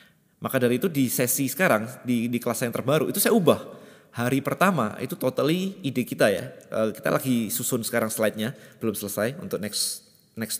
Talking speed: 175 wpm